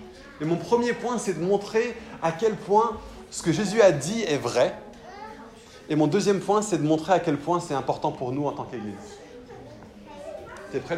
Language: French